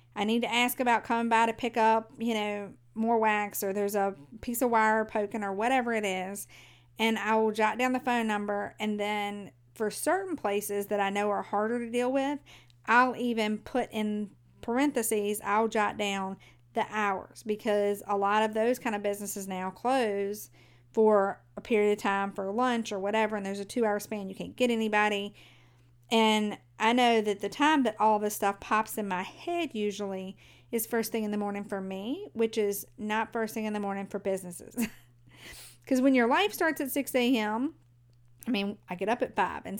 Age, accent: 40-59, American